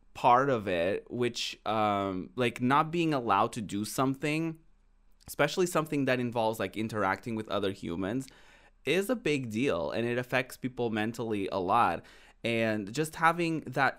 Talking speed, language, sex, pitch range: 155 wpm, English, male, 110-135 Hz